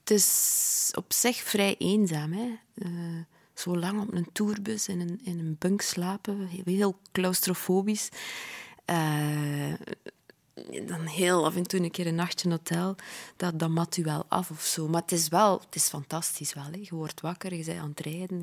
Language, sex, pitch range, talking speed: Dutch, female, 165-190 Hz, 185 wpm